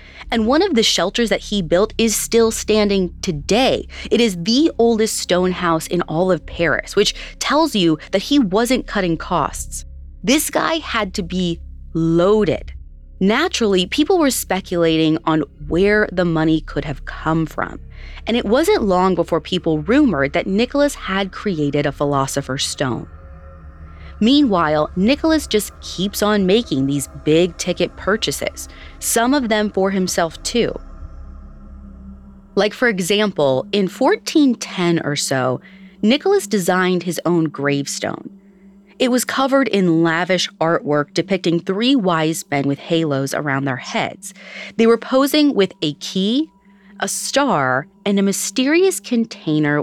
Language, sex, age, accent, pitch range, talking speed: English, female, 30-49, American, 150-215 Hz, 140 wpm